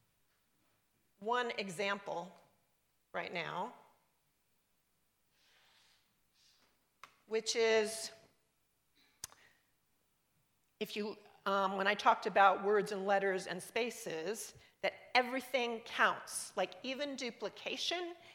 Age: 40-59